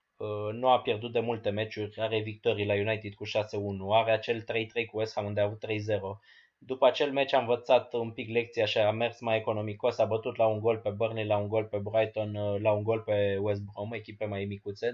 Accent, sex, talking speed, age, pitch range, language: native, male, 225 wpm, 20-39, 105-135 Hz, Romanian